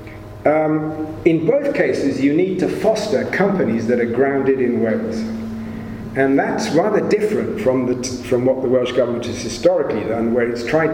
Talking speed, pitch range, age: 175 wpm, 110-140 Hz, 40-59